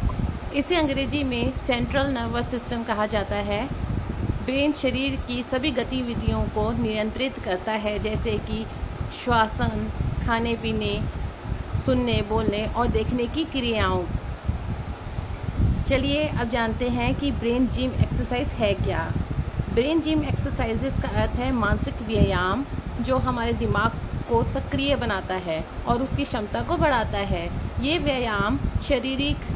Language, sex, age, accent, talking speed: Hindi, female, 30-49, native, 130 wpm